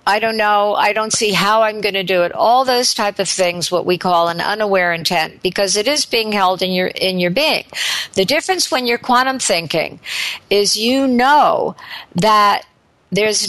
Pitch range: 195-240 Hz